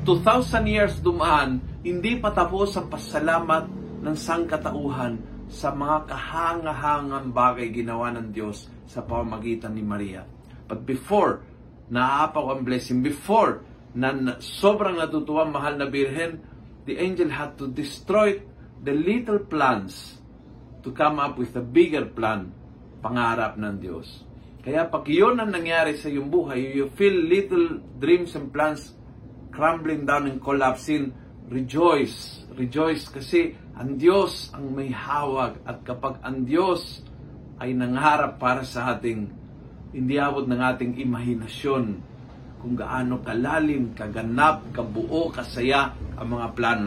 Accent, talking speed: native, 125 wpm